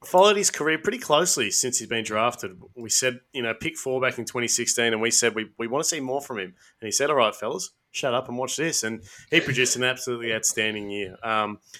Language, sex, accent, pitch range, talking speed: English, male, Australian, 110-135 Hz, 245 wpm